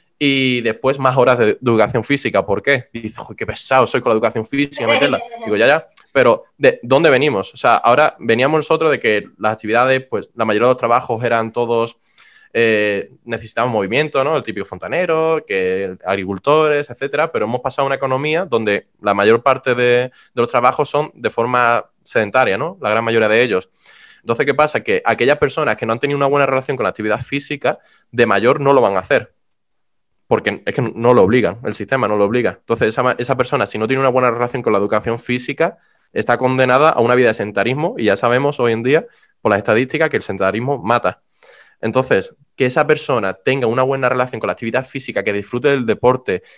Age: 20-39